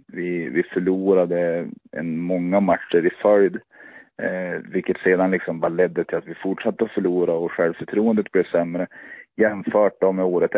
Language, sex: Swedish, male